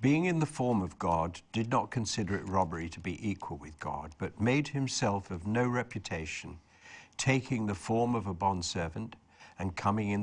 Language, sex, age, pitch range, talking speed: English, male, 60-79, 90-115 Hz, 180 wpm